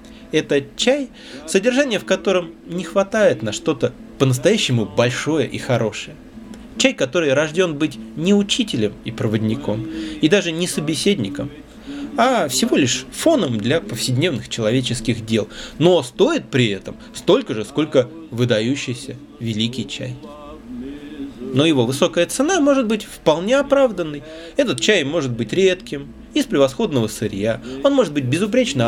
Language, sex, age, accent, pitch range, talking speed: Russian, male, 20-39, native, 115-195 Hz, 130 wpm